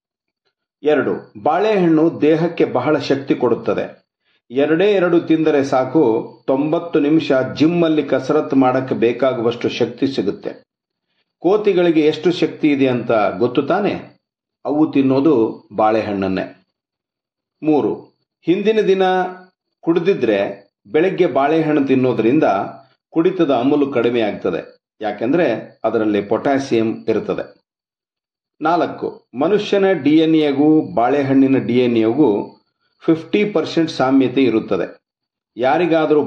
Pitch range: 125-165 Hz